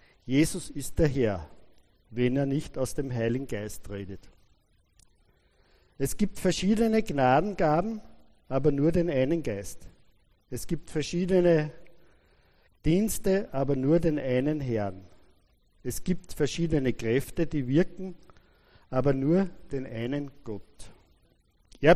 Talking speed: 115 wpm